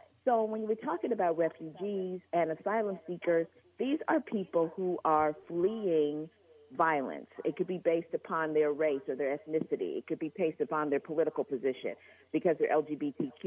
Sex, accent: female, American